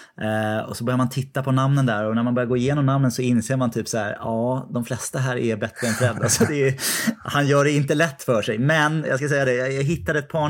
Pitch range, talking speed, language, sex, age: 110-130 Hz, 275 wpm, Swedish, male, 20-39